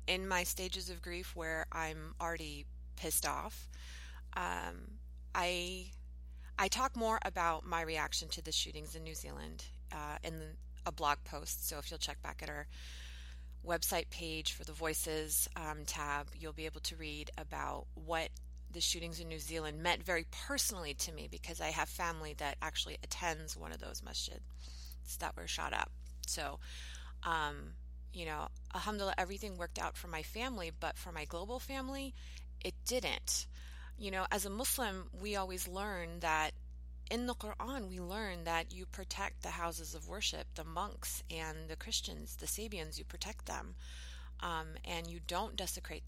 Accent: American